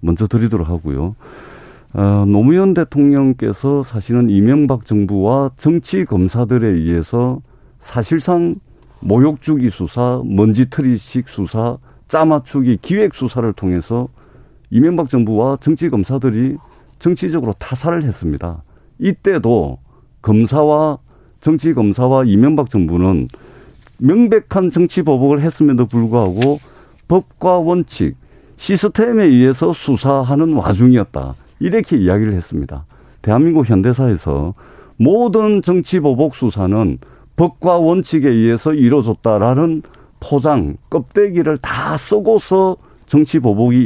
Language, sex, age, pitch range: Korean, male, 50-69, 105-155 Hz